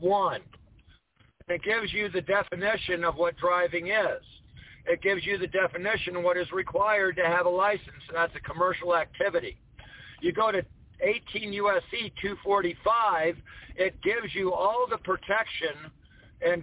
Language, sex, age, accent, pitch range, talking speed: English, male, 60-79, American, 165-200 Hz, 150 wpm